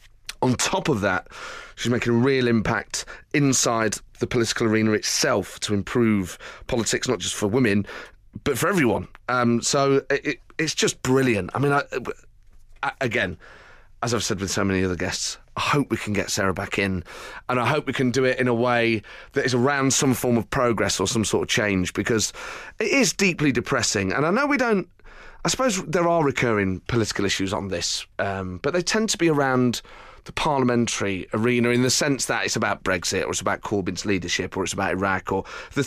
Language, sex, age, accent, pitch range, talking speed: English, male, 30-49, British, 100-145 Hz, 195 wpm